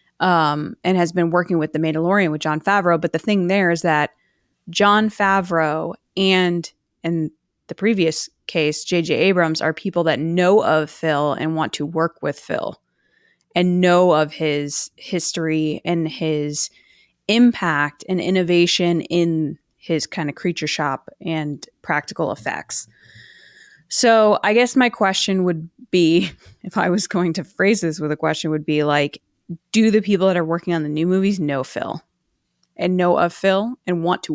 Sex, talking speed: female, 170 wpm